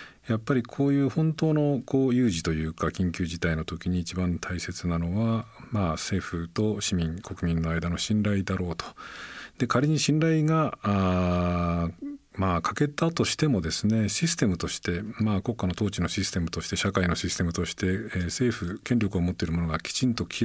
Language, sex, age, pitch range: Japanese, male, 50-69, 85-110 Hz